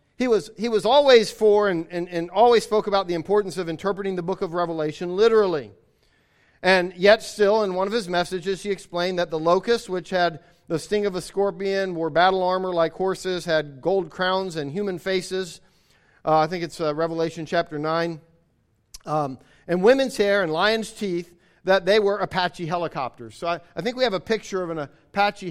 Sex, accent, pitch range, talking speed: male, American, 160-205 Hz, 195 wpm